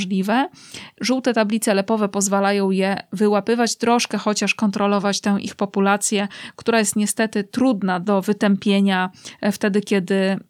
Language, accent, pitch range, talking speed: Polish, native, 200-225 Hz, 120 wpm